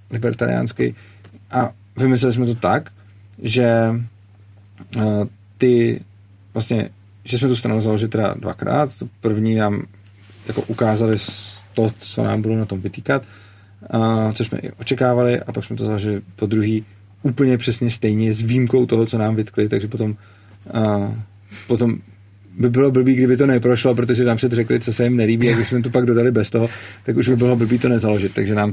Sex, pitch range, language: male, 100-120 Hz, Czech